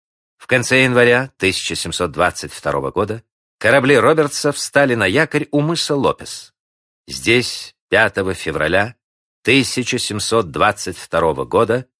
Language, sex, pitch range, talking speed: Russian, male, 100-140 Hz, 90 wpm